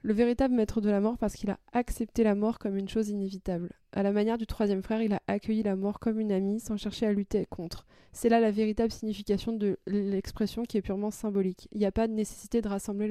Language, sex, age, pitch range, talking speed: French, female, 20-39, 190-215 Hz, 250 wpm